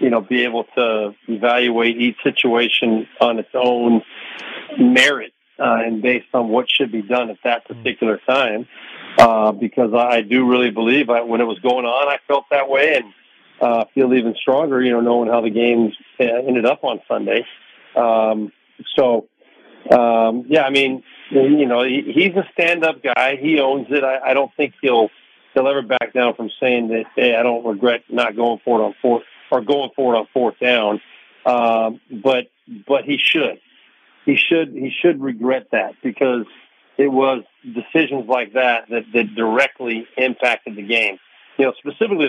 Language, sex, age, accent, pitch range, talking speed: English, male, 50-69, American, 115-140 Hz, 175 wpm